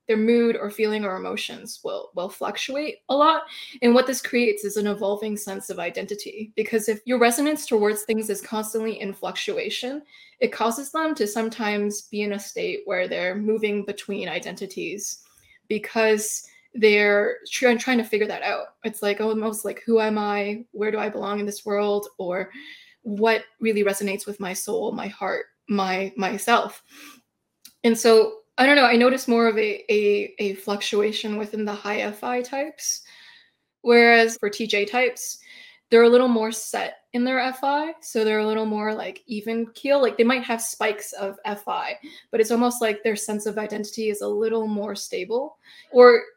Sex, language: female, English